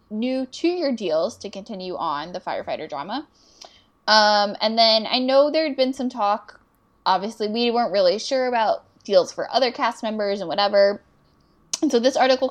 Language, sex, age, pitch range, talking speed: English, female, 10-29, 195-255 Hz, 175 wpm